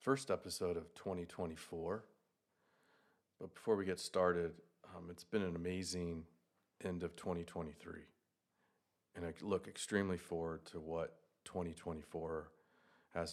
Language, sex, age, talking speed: English, male, 40-59, 115 wpm